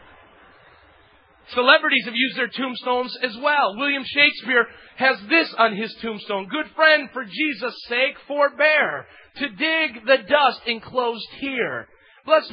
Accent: American